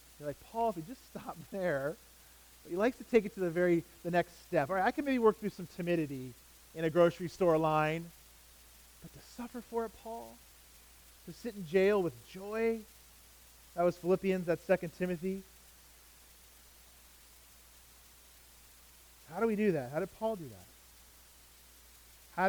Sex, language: male, English